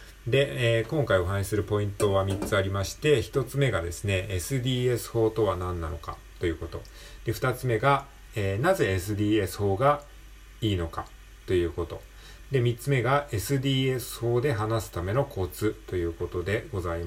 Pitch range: 90-130 Hz